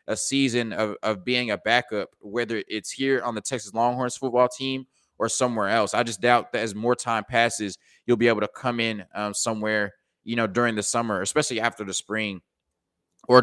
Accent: American